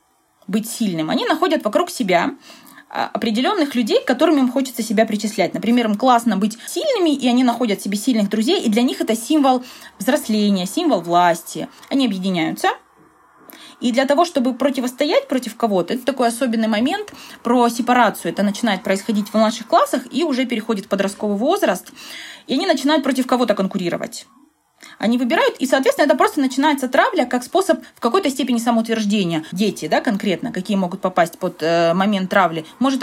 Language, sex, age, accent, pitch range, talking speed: Russian, female, 20-39, native, 205-275 Hz, 165 wpm